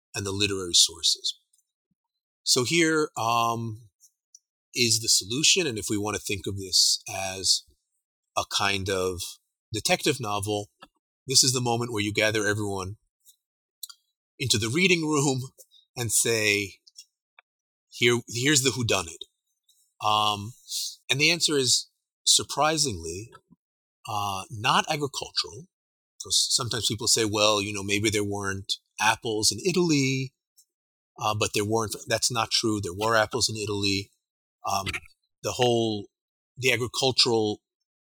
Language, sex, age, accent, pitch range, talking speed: English, male, 30-49, American, 100-135 Hz, 130 wpm